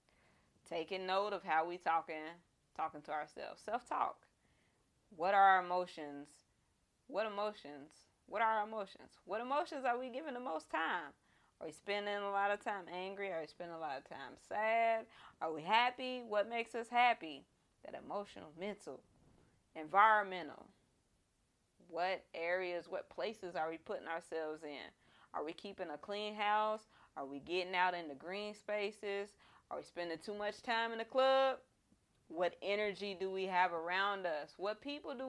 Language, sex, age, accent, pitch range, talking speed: English, female, 30-49, American, 175-230 Hz, 165 wpm